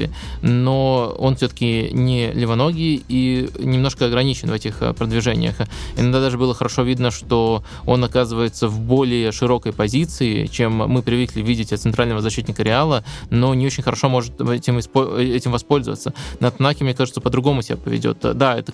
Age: 20-39